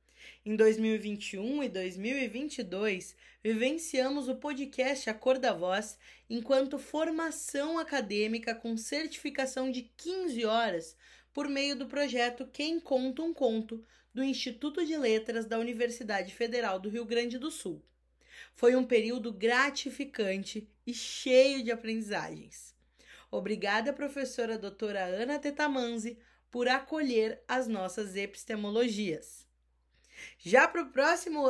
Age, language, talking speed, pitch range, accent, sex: 20-39, Portuguese, 115 wpm, 220-275 Hz, Brazilian, female